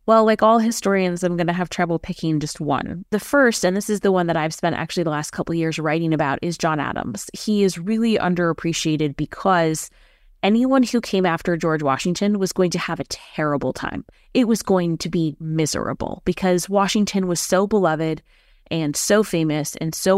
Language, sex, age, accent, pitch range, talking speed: English, female, 20-39, American, 155-185 Hz, 200 wpm